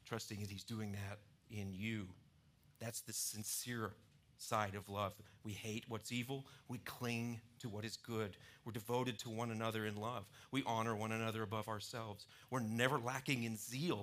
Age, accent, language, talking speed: 50-69, American, English, 175 wpm